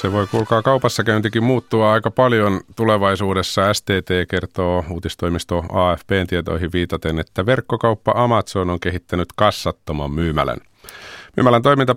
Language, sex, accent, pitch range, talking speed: Finnish, male, native, 80-105 Hz, 115 wpm